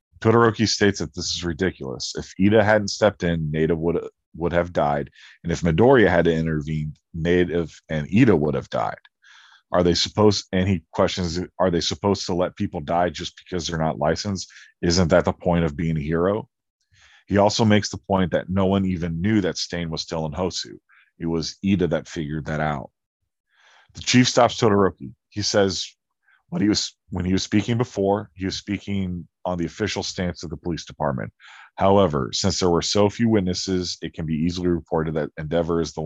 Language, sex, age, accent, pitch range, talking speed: English, male, 40-59, American, 80-100 Hz, 195 wpm